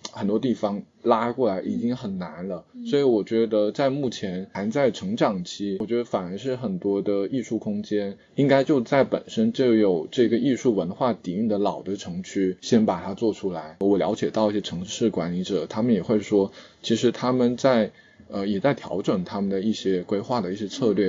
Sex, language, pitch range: male, Chinese, 95-120 Hz